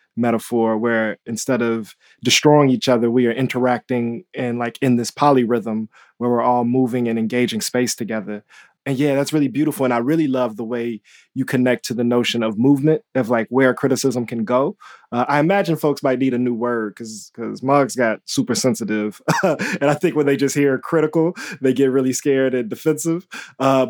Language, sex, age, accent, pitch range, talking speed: English, male, 20-39, American, 115-140 Hz, 190 wpm